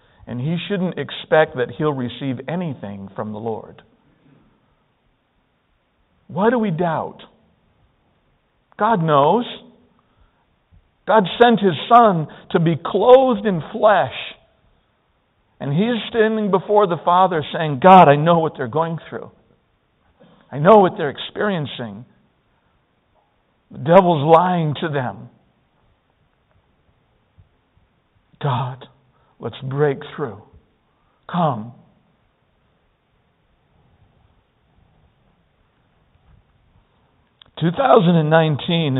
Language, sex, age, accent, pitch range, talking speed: English, male, 60-79, American, 130-170 Hz, 85 wpm